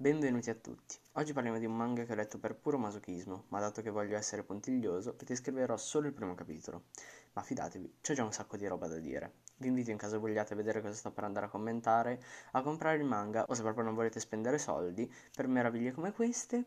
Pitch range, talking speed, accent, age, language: 105-130 Hz, 225 wpm, native, 20-39, Italian